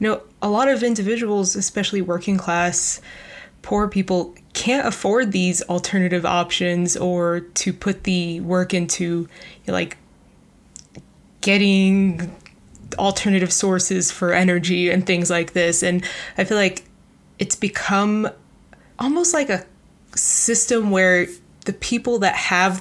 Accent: American